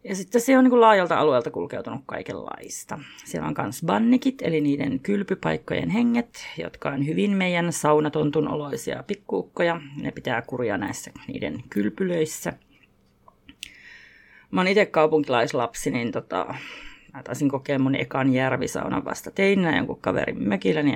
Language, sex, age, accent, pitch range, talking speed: Finnish, female, 30-49, native, 150-230 Hz, 135 wpm